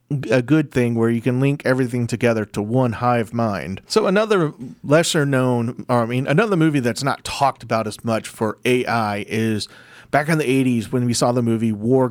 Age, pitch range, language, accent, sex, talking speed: 40-59, 115-145 Hz, English, American, male, 200 wpm